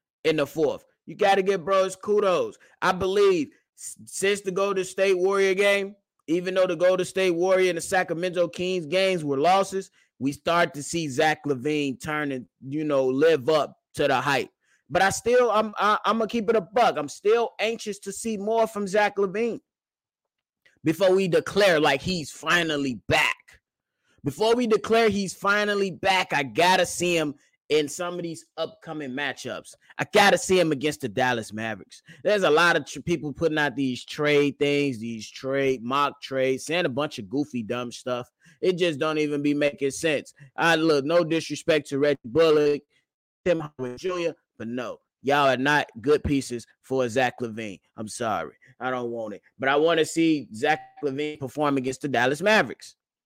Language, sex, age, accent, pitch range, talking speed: English, male, 20-39, American, 140-190 Hz, 190 wpm